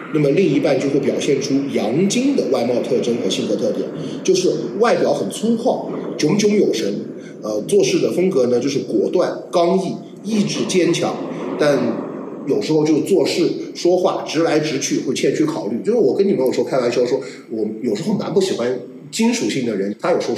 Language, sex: Chinese, male